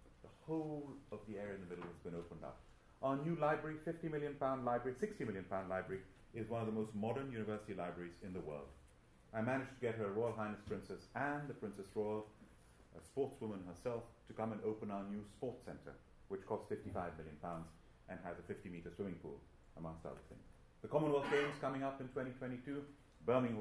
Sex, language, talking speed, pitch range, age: male, English, 200 wpm, 95-145 Hz, 30-49